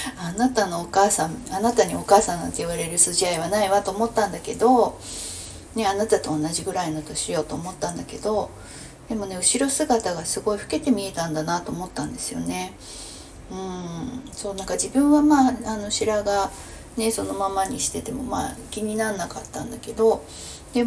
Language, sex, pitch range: Japanese, female, 175-235 Hz